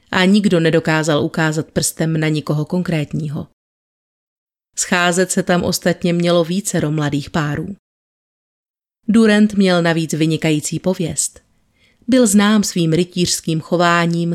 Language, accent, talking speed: Czech, native, 110 wpm